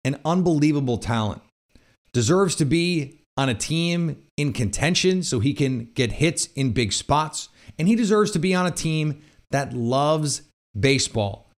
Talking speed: 155 wpm